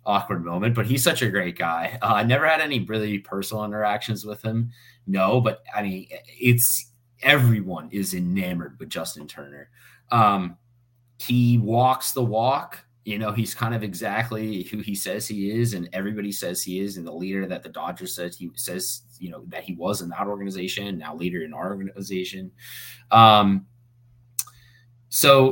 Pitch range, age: 95-120 Hz, 20-39